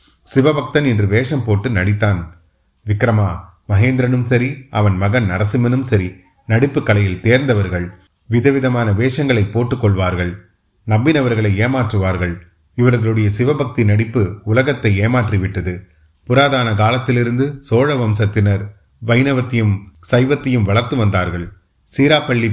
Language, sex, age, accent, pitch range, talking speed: Tamil, male, 30-49, native, 100-125 Hz, 90 wpm